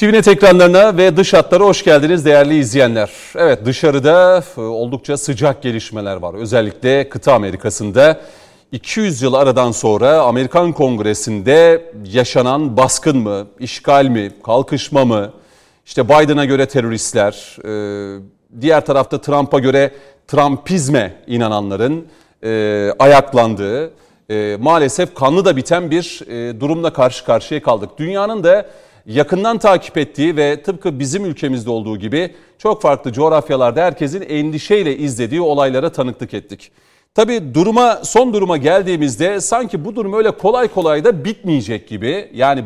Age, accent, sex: 40-59, native, male